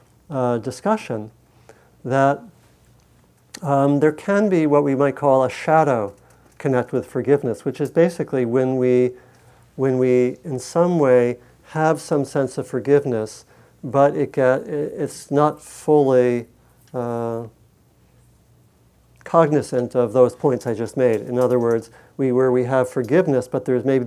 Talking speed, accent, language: 140 wpm, American, English